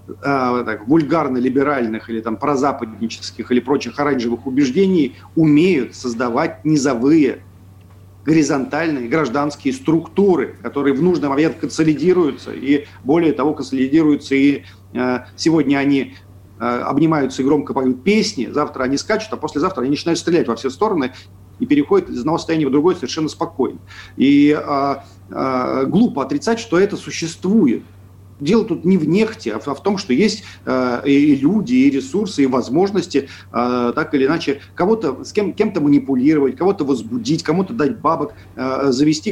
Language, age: Russian, 40-59